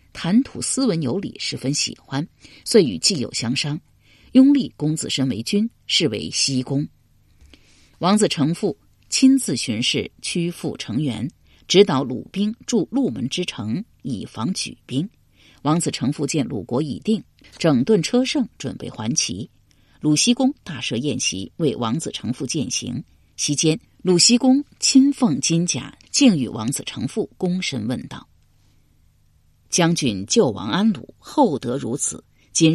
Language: Chinese